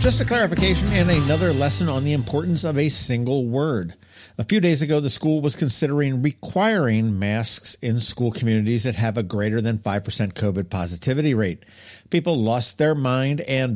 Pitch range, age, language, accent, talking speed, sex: 105-155 Hz, 50-69, English, American, 175 wpm, male